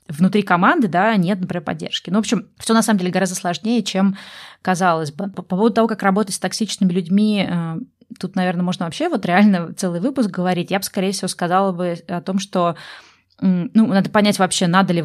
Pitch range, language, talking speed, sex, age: 170-195 Hz, Russian, 200 wpm, female, 20-39